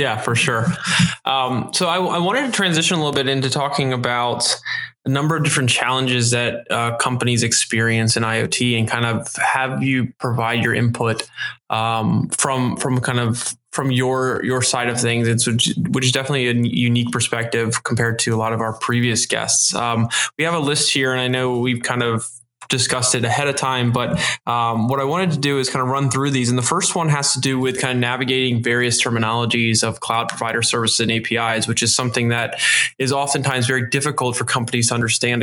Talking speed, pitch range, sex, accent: 210 wpm, 115-135 Hz, male, American